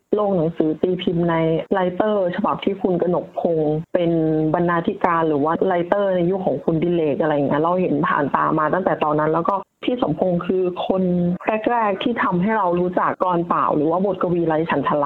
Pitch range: 160-200 Hz